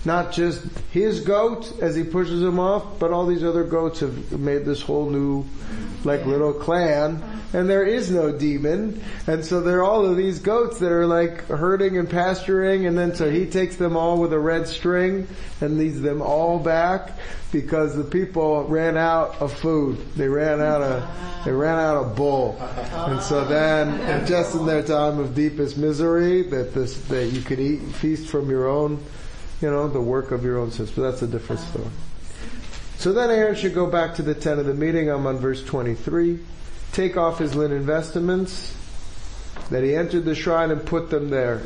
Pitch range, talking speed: 135-170 Hz, 195 wpm